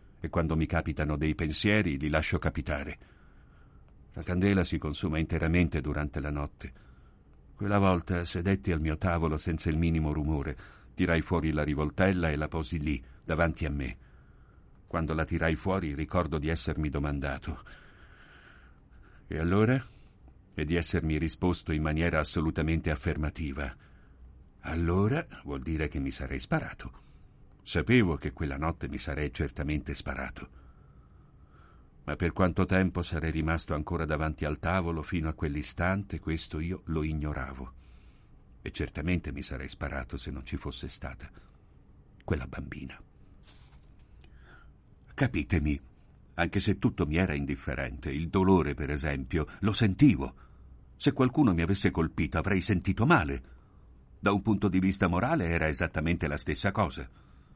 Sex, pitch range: male, 70-90 Hz